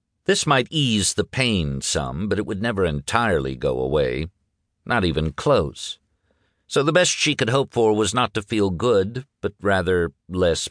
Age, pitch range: 50-69, 85-120 Hz